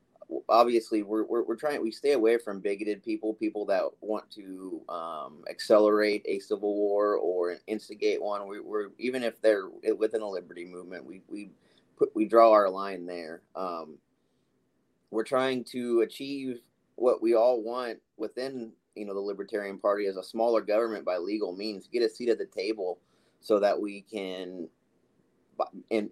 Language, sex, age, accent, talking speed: English, male, 30-49, American, 170 wpm